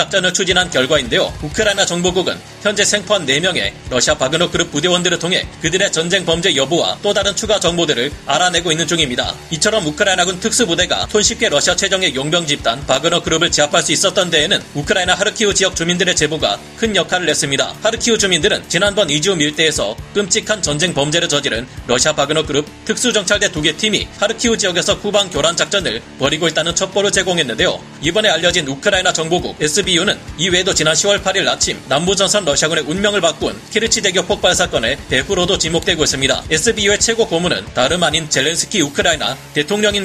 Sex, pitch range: male, 160-205 Hz